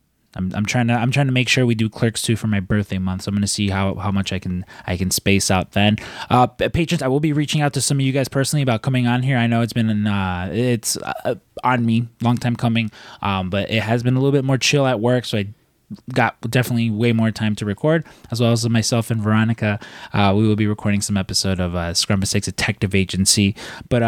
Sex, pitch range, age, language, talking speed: male, 100-125 Hz, 20-39, English, 255 wpm